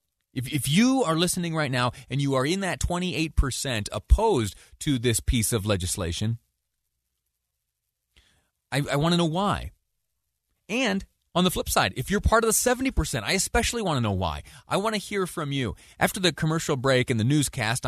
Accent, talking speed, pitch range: American, 185 wpm, 100-145 Hz